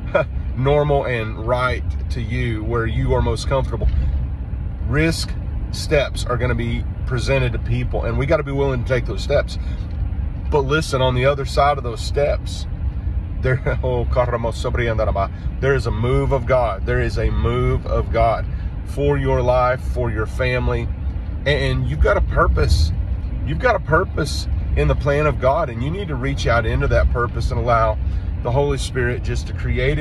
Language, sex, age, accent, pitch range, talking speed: English, male, 40-59, American, 80-130 Hz, 175 wpm